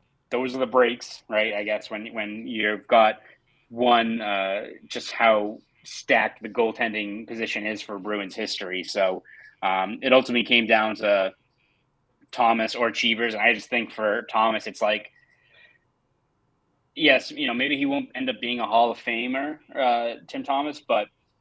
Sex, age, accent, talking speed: male, 30-49, American, 165 wpm